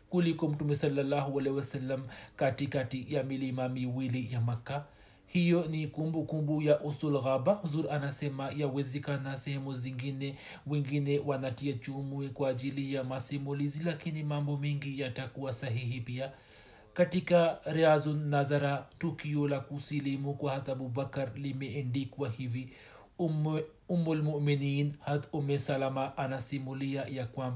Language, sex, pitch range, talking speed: Swahili, male, 135-150 Hz, 130 wpm